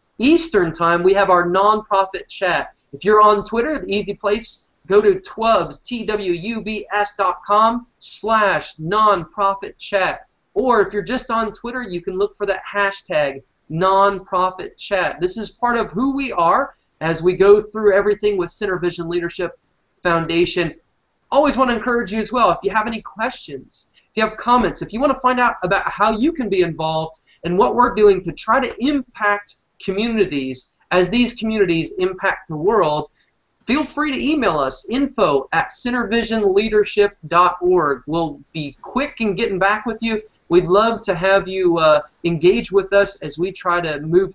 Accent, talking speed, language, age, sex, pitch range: American, 170 wpm, English, 20-39, male, 175-220 Hz